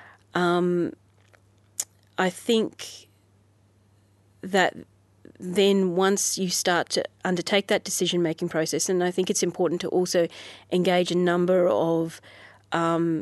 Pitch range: 165-185 Hz